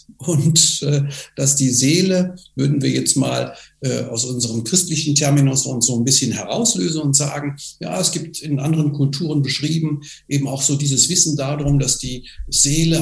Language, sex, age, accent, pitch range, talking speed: German, male, 60-79, German, 135-155 Hz, 165 wpm